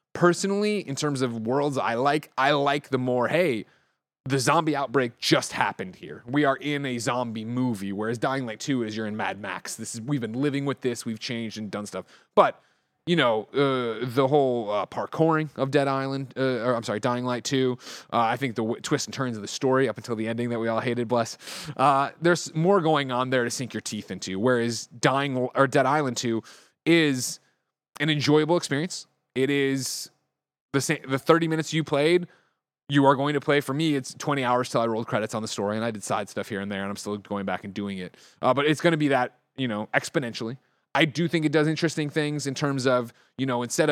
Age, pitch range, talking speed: 30-49, 115-145 Hz, 230 wpm